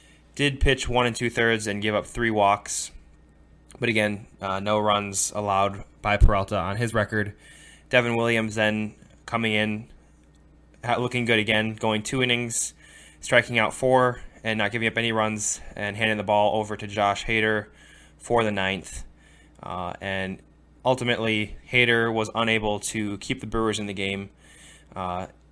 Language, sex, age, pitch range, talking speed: English, male, 20-39, 100-115 Hz, 155 wpm